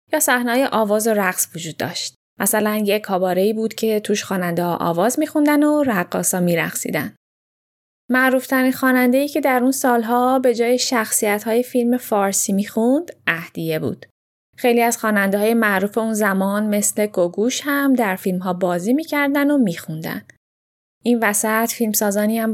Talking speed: 140 wpm